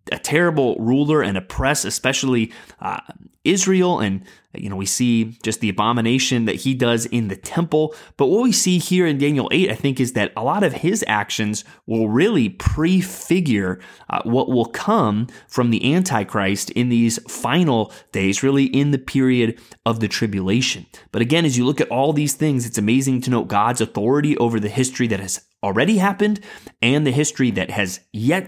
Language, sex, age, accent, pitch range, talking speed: English, male, 30-49, American, 110-150 Hz, 185 wpm